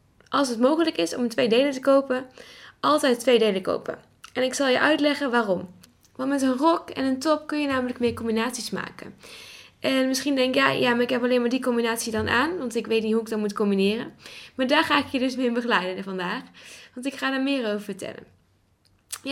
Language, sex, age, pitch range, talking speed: Dutch, female, 10-29, 210-270 Hz, 225 wpm